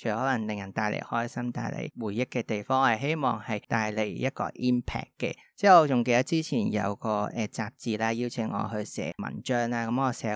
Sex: male